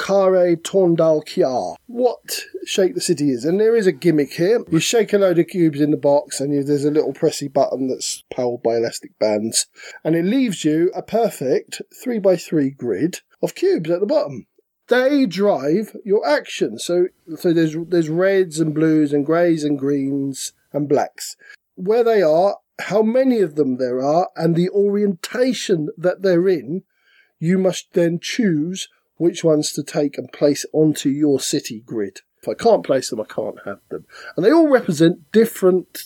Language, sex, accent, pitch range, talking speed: English, male, British, 150-200 Hz, 185 wpm